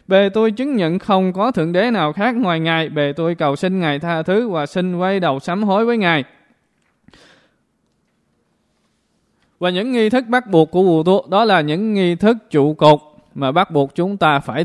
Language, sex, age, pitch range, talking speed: Vietnamese, male, 20-39, 155-200 Hz, 200 wpm